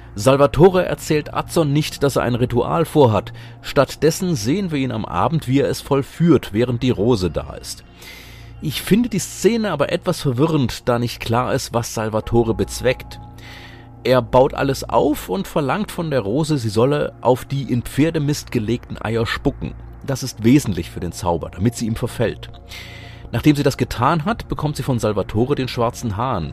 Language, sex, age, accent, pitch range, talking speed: German, male, 30-49, German, 110-140 Hz, 175 wpm